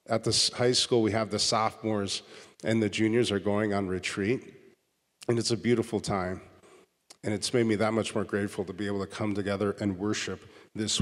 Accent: American